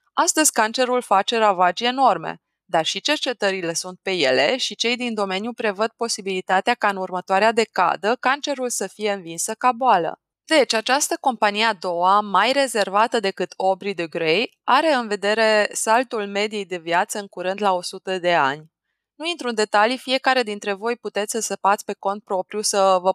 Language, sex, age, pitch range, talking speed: Romanian, female, 20-39, 195-240 Hz, 170 wpm